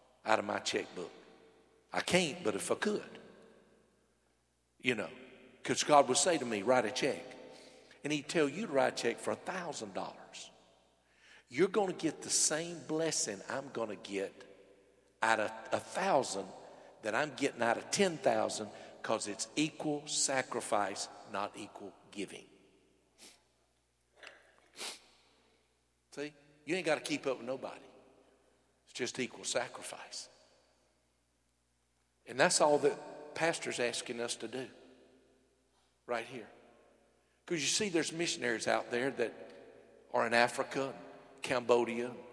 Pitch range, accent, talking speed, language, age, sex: 100-140 Hz, American, 135 wpm, English, 50-69, male